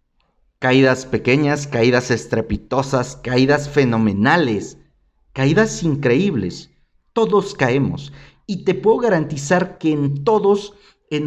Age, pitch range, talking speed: 40-59, 120-155 Hz, 95 wpm